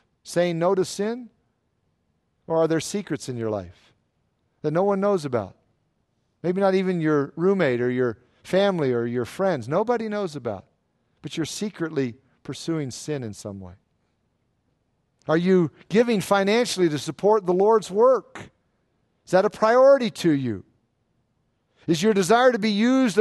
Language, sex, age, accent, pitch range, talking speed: English, male, 50-69, American, 135-200 Hz, 155 wpm